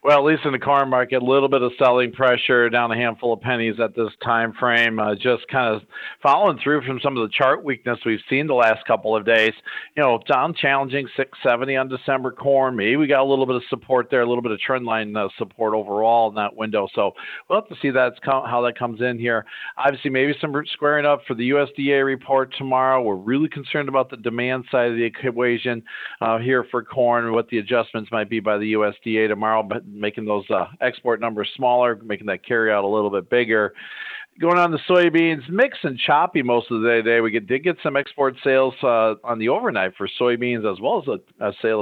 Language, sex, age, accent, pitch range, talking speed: English, male, 50-69, American, 115-135 Hz, 230 wpm